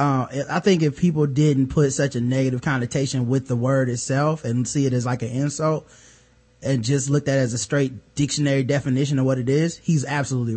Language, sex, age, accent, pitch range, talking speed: English, male, 20-39, American, 130-165 Hz, 215 wpm